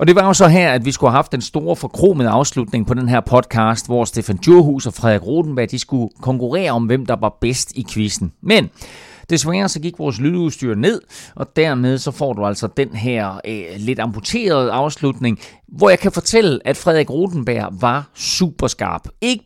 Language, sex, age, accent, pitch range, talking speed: Danish, male, 40-59, native, 115-165 Hz, 195 wpm